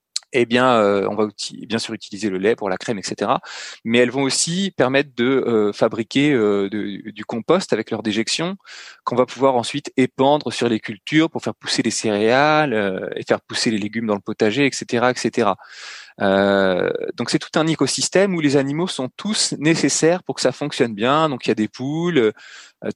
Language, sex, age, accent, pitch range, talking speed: French, male, 20-39, French, 115-155 Hz, 205 wpm